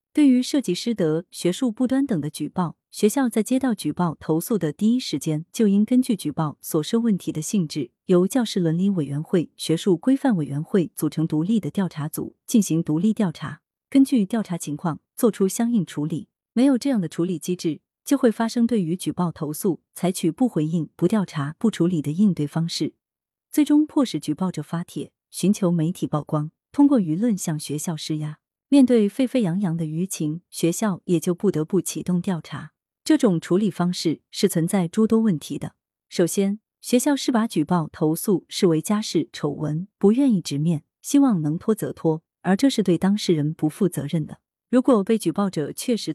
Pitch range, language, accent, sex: 155-220 Hz, Chinese, native, female